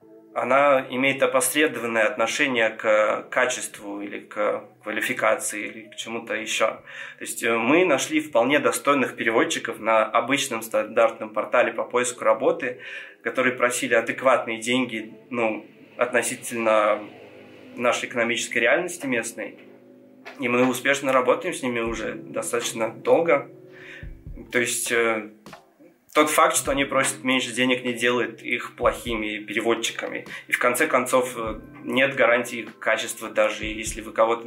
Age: 20-39